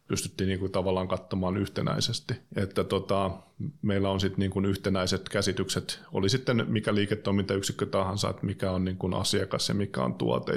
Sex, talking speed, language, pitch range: male, 160 wpm, English, 95-100 Hz